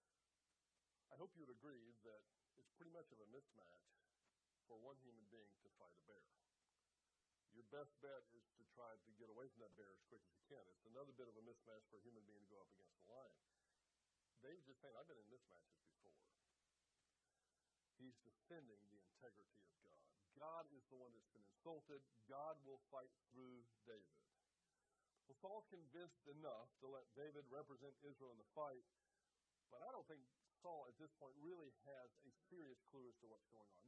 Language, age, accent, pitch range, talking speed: English, 50-69, American, 120-160 Hz, 195 wpm